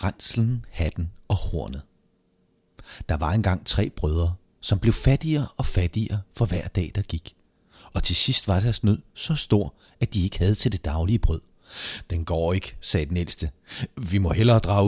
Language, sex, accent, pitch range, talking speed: Danish, male, native, 85-120 Hz, 180 wpm